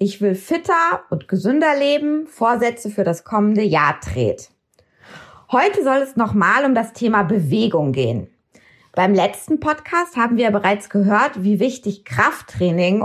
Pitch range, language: 195-285 Hz, German